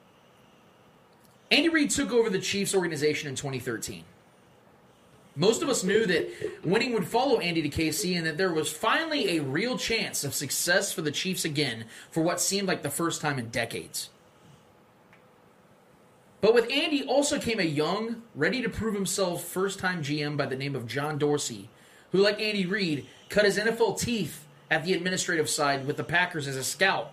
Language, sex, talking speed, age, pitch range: English, male, 170 wpm, 30-49, 145-205 Hz